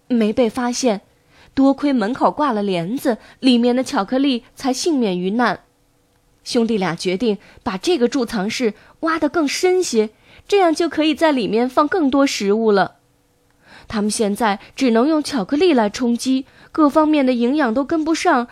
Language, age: Chinese, 20-39